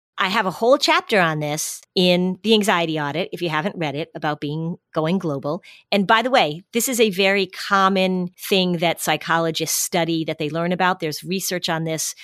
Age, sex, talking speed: 40-59, female, 200 wpm